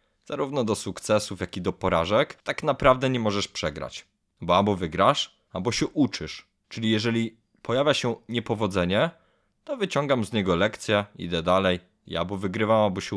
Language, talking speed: Polish, 160 wpm